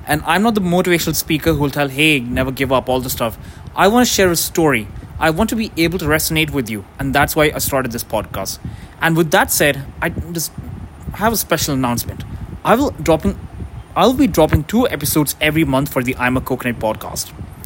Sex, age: male, 20-39